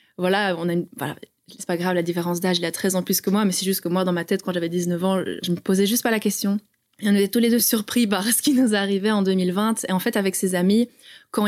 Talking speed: 305 wpm